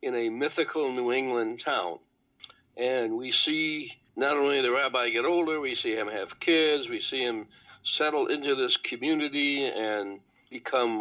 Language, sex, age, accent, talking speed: English, male, 60-79, American, 160 wpm